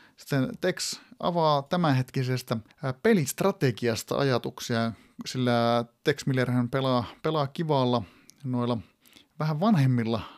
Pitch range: 115-140 Hz